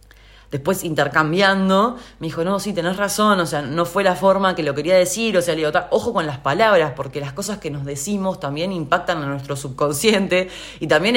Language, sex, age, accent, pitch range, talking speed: Spanish, female, 20-39, Argentinian, 140-195 Hz, 210 wpm